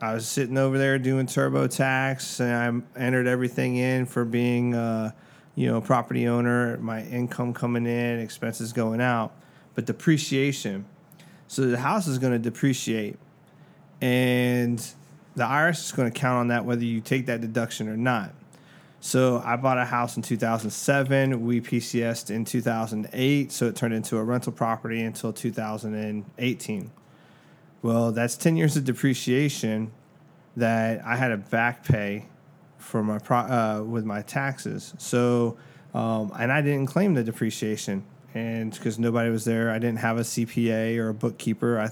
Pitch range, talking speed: 115-130 Hz, 165 wpm